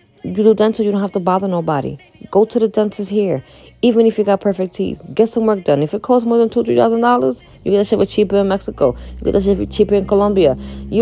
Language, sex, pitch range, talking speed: English, female, 165-225 Hz, 265 wpm